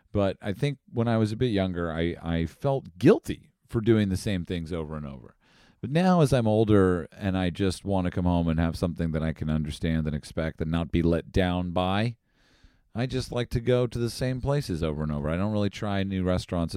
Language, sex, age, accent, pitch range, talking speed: English, male, 40-59, American, 85-110 Hz, 235 wpm